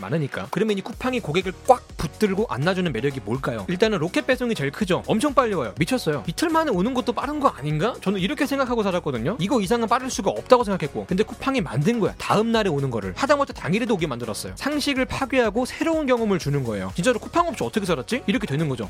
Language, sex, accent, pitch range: Korean, male, native, 160-245 Hz